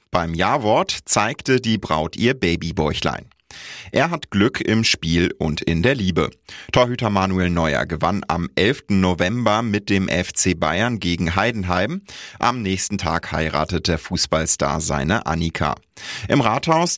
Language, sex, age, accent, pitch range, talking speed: German, male, 30-49, German, 90-115 Hz, 140 wpm